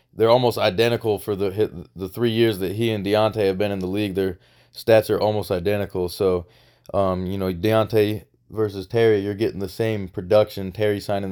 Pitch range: 100-120 Hz